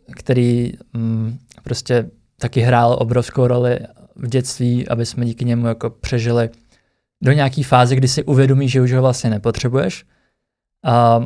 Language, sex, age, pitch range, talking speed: Czech, male, 20-39, 120-135 Hz, 145 wpm